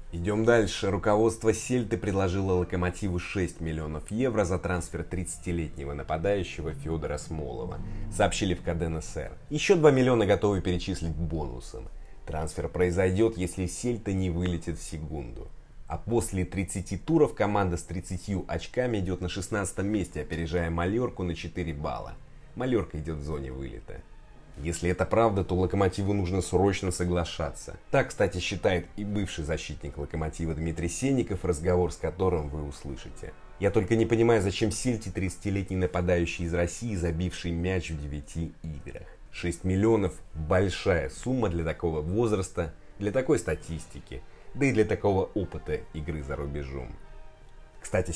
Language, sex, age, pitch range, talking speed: Russian, male, 20-39, 80-100 Hz, 140 wpm